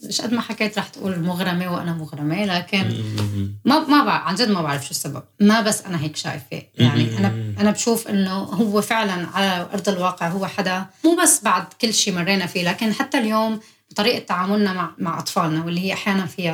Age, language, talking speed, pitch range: 20-39, Arabic, 190 wpm, 160-200 Hz